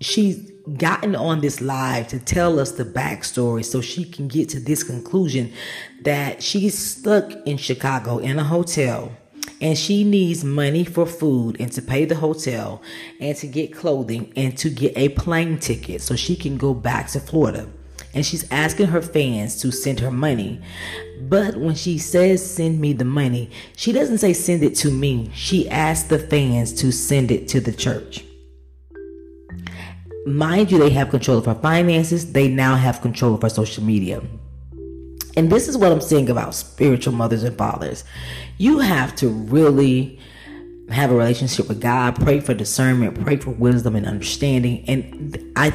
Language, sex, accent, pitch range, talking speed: English, female, American, 115-155 Hz, 175 wpm